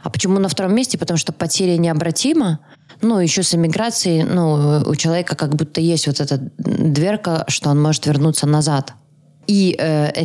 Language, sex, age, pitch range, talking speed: Russian, female, 20-39, 145-175 Hz, 170 wpm